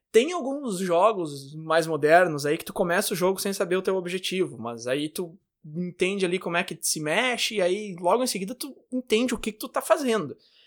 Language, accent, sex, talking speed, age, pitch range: Portuguese, Brazilian, male, 220 wpm, 20-39, 160-215 Hz